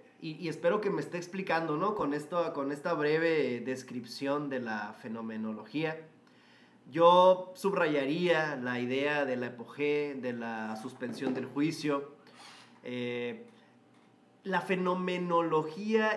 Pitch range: 135-180 Hz